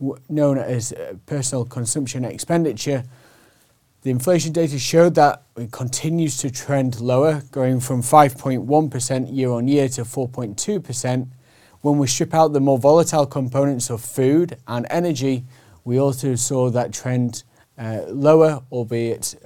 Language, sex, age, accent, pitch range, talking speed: English, male, 30-49, British, 120-140 Hz, 135 wpm